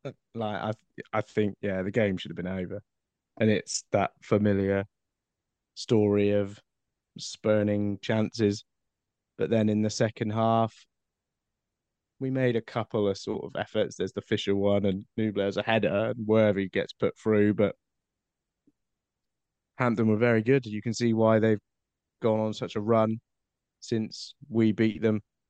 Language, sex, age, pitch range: English, male, 20-39, 100-115 Hz